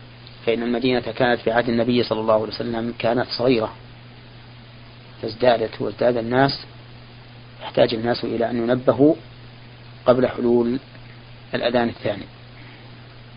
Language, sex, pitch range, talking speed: Arabic, male, 120-125 Hz, 110 wpm